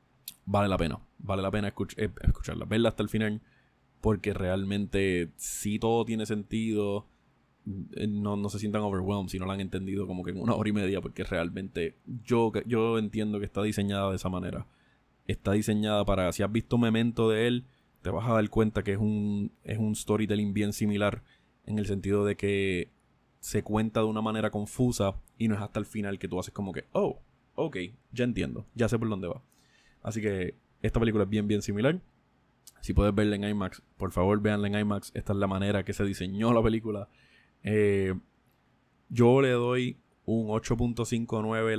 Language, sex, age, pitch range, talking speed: Spanish, male, 20-39, 100-110 Hz, 190 wpm